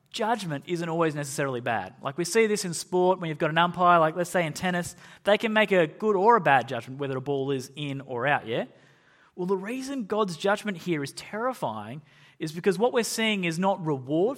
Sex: male